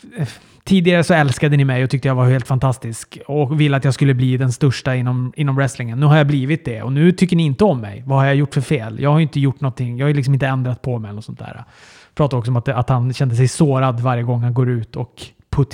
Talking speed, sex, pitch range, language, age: 280 wpm, male, 125-150 Hz, Swedish, 30-49